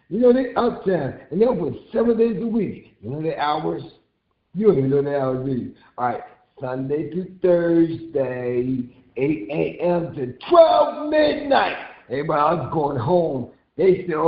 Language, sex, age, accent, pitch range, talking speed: English, male, 60-79, American, 140-225 Hz, 150 wpm